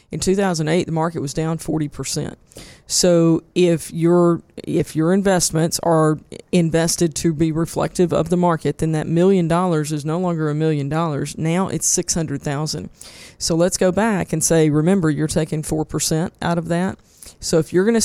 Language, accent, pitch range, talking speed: English, American, 155-180 Hz, 190 wpm